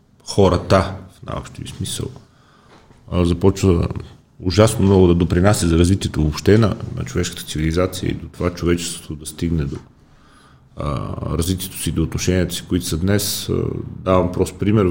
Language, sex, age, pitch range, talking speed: Bulgarian, male, 40-59, 85-105 Hz, 135 wpm